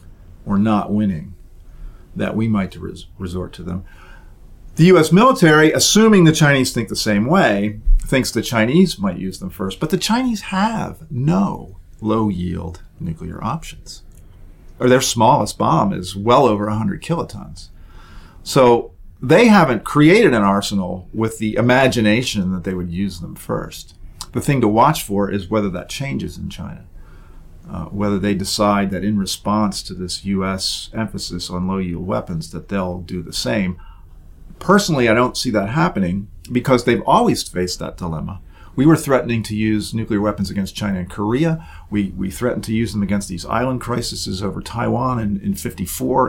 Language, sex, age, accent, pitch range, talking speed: English, male, 40-59, American, 90-120 Hz, 165 wpm